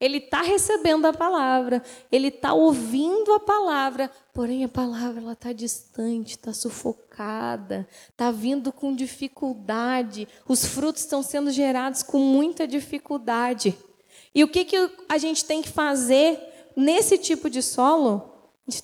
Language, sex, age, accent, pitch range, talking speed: Portuguese, female, 20-39, Brazilian, 245-320 Hz, 140 wpm